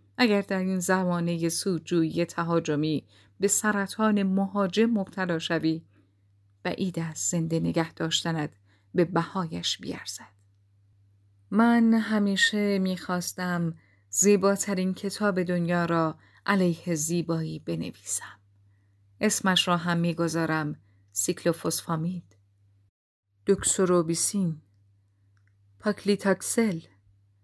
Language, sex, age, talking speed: Persian, female, 30-49, 80 wpm